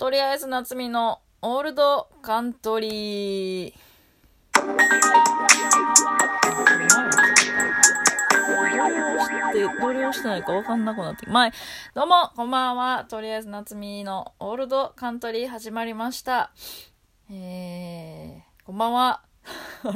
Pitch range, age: 160-240 Hz, 20-39